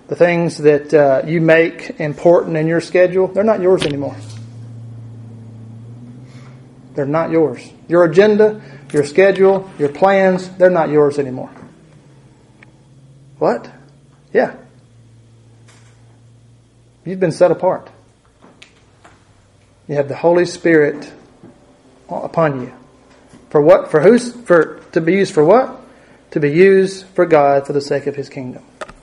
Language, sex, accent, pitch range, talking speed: English, male, American, 135-165 Hz, 120 wpm